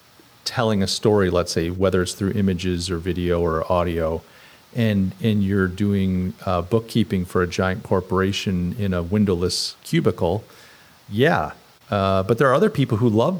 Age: 40-59